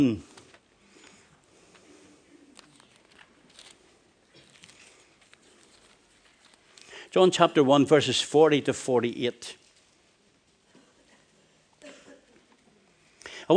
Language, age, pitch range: English, 60-79, 150-190 Hz